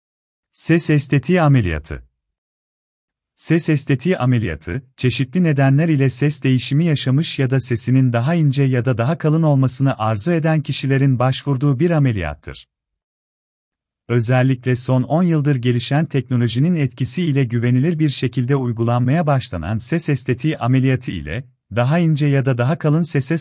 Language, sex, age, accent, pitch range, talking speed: Turkish, male, 40-59, native, 115-150 Hz, 135 wpm